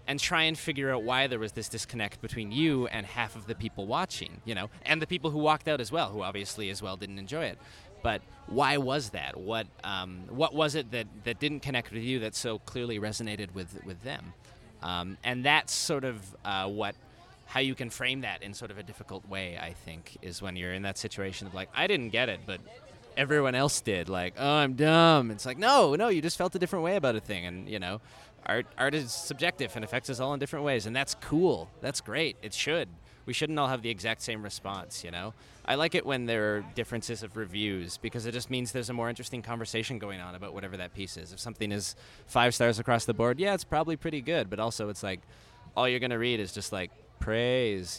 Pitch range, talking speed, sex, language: 100-130 Hz, 240 wpm, male, English